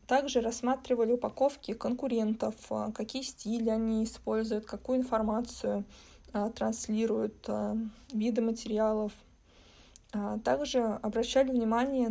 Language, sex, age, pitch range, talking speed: Russian, female, 20-39, 215-240 Hz, 80 wpm